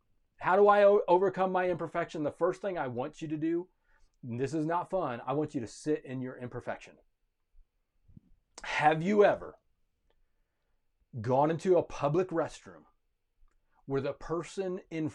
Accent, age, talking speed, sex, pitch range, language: American, 30-49, 155 wpm, male, 130-185 Hz, English